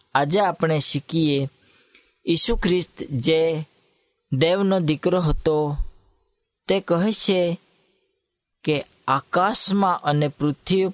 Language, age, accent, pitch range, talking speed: Hindi, 20-39, native, 145-180 Hz, 65 wpm